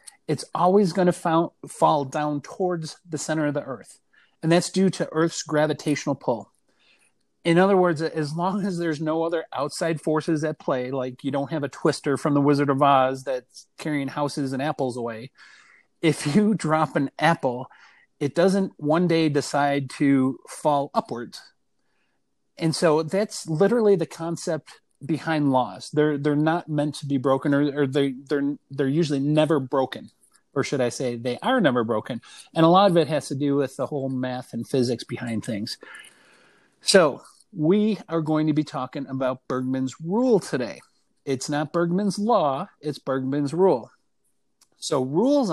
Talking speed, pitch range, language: 170 wpm, 140-170 Hz, English